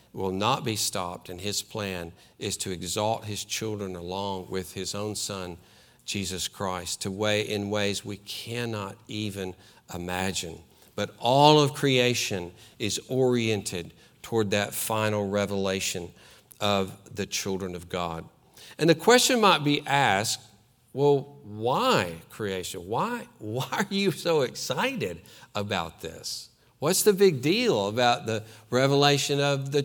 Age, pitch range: 50-69, 105-165 Hz